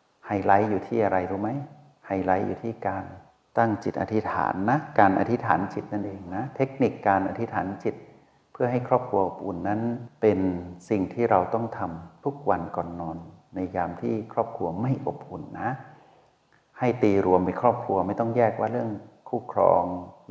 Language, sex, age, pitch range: Thai, male, 60-79, 95-115 Hz